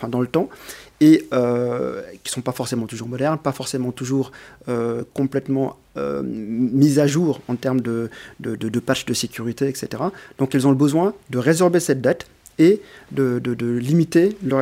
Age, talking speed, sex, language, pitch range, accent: 40-59, 195 wpm, male, French, 120-145 Hz, French